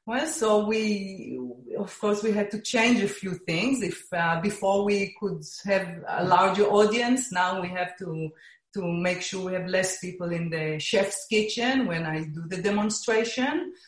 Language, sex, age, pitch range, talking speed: English, female, 30-49, 175-220 Hz, 175 wpm